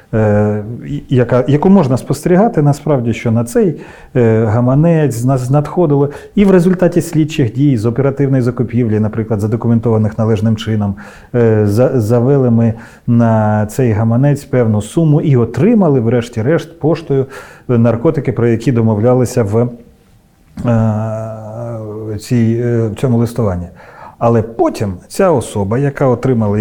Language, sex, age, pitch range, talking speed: Ukrainian, male, 40-59, 110-140 Hz, 100 wpm